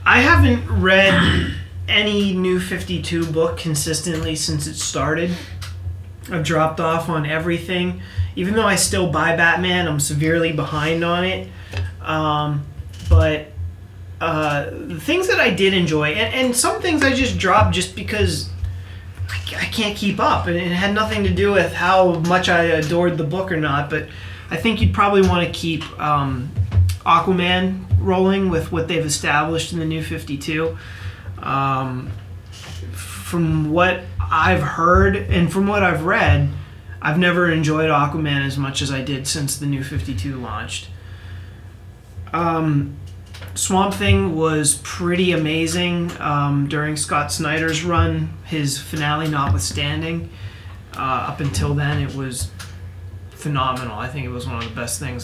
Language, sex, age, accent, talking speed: English, male, 30-49, American, 150 wpm